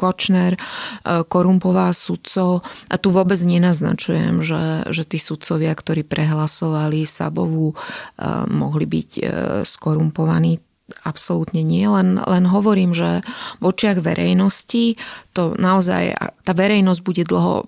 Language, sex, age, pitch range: Slovak, female, 30-49, 175-205 Hz